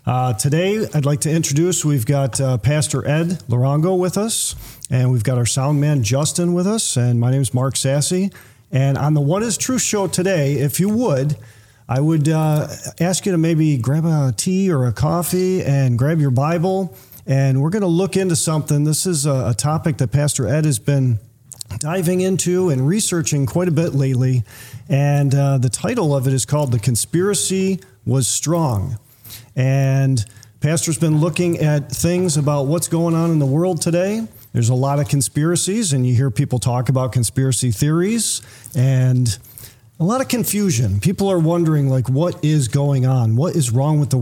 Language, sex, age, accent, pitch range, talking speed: English, male, 40-59, American, 130-170 Hz, 190 wpm